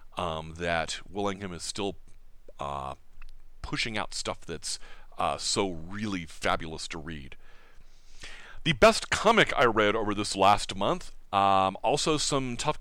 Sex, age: male, 40-59